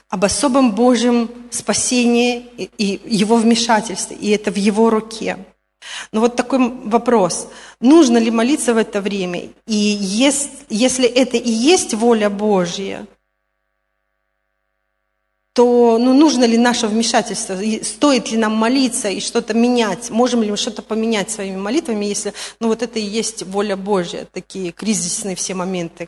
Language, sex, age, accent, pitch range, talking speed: Russian, female, 30-49, native, 195-240 Hz, 145 wpm